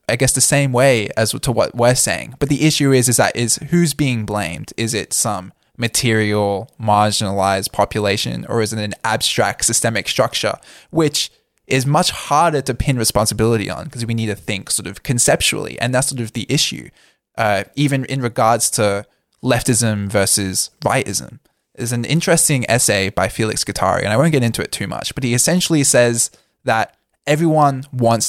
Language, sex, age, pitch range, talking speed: English, male, 10-29, 110-140 Hz, 180 wpm